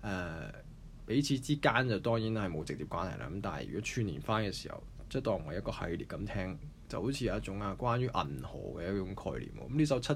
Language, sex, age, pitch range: Chinese, male, 20-39, 90-120 Hz